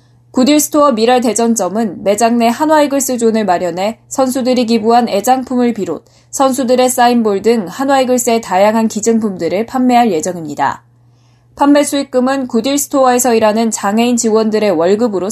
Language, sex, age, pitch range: Korean, female, 20-39, 190-255 Hz